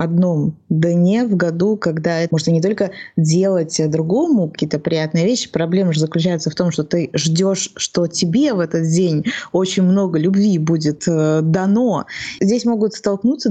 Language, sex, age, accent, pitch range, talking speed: Russian, female, 20-39, native, 170-205 Hz, 155 wpm